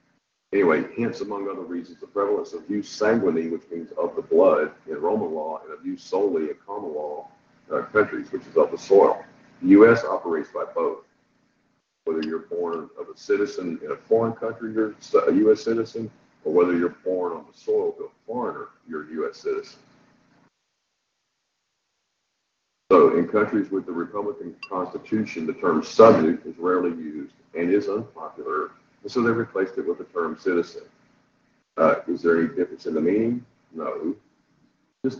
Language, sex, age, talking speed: English, male, 50-69, 170 wpm